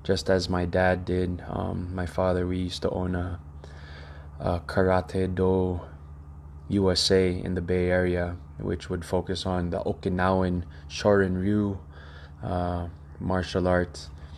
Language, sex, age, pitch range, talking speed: English, male, 20-39, 75-95 Hz, 130 wpm